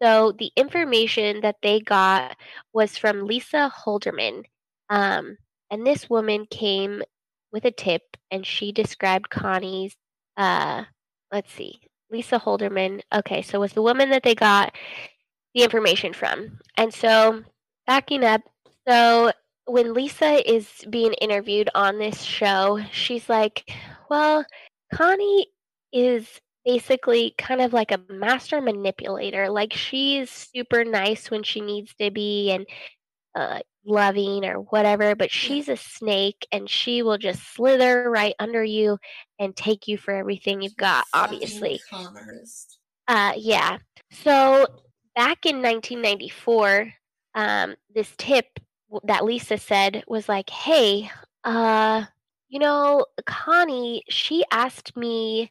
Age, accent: 10-29, American